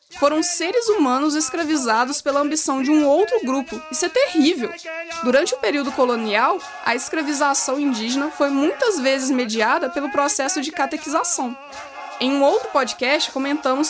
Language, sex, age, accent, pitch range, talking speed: Portuguese, female, 20-39, Brazilian, 255-310 Hz, 145 wpm